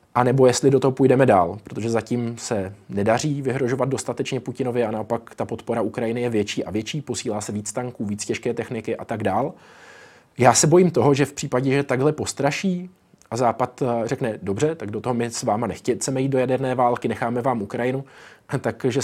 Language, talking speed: Czech, 195 wpm